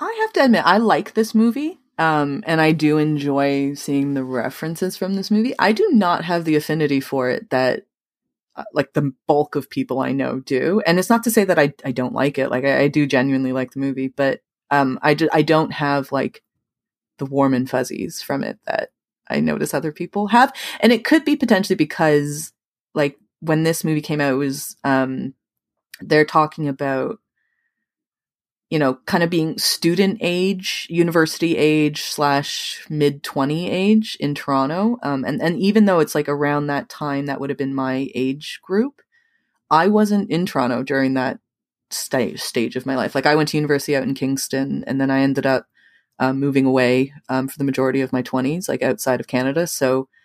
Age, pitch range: 20-39, 135-170 Hz